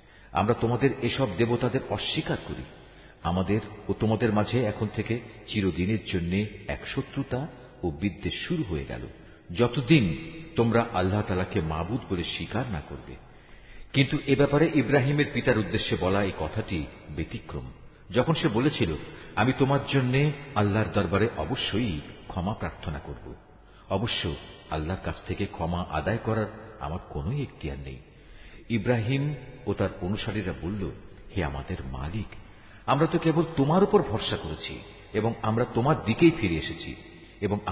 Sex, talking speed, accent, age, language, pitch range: male, 125 wpm, native, 50-69, Bengali, 90-125 Hz